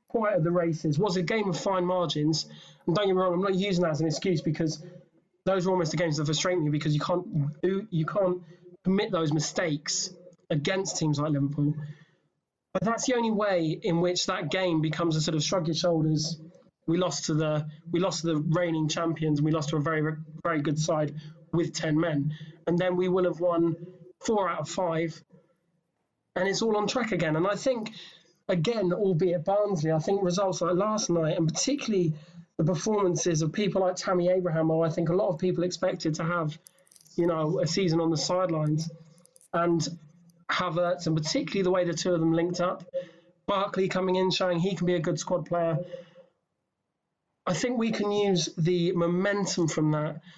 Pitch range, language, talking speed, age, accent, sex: 160-185 Hz, English, 195 wpm, 20-39, British, male